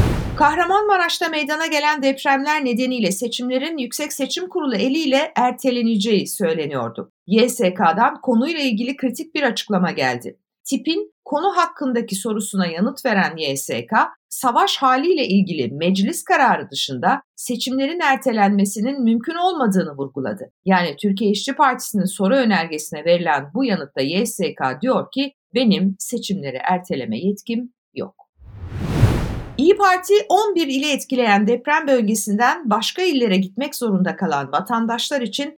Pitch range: 190-275 Hz